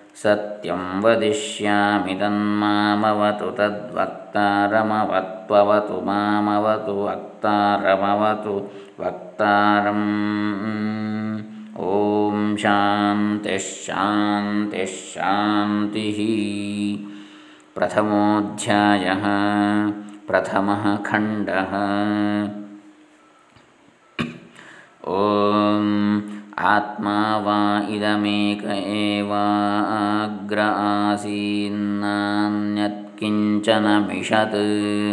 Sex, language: male, Kannada